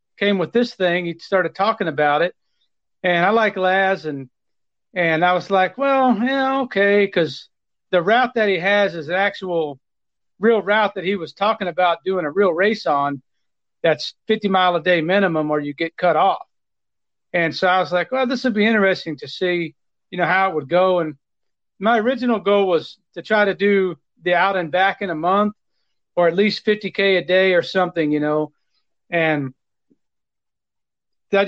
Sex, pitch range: male, 165-200 Hz